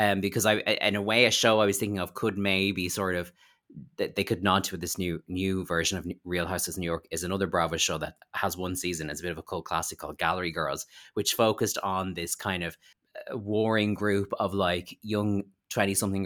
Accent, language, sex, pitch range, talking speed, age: Irish, English, male, 90-105 Hz, 235 wpm, 20-39